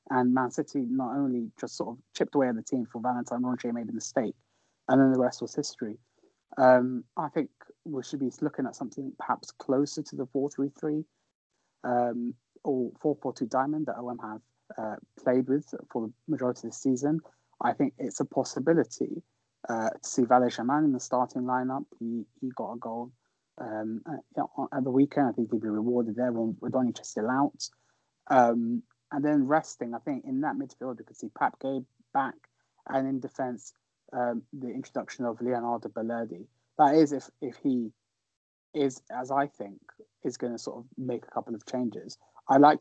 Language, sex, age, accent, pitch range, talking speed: English, male, 30-49, British, 115-135 Hz, 190 wpm